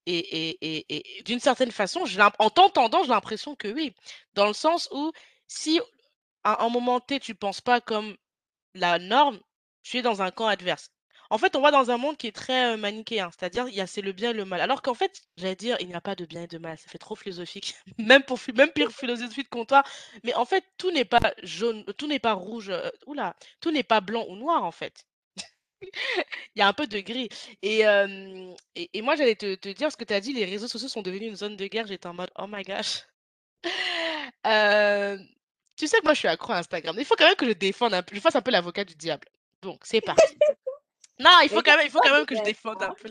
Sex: female